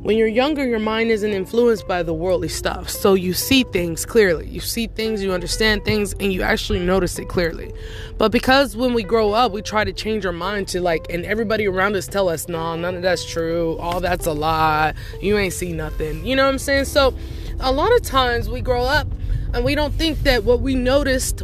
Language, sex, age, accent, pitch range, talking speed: English, female, 20-39, American, 190-265 Hz, 230 wpm